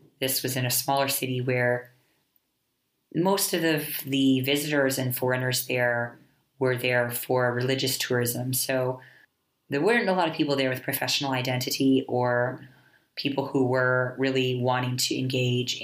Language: English